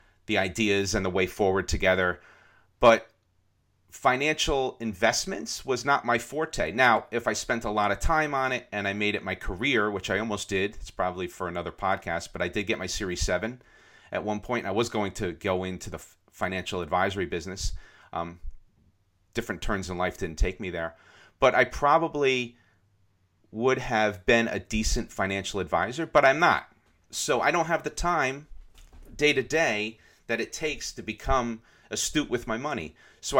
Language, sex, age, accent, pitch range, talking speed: English, male, 40-59, American, 95-120 Hz, 180 wpm